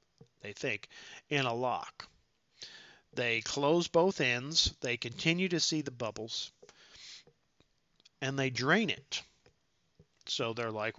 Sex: male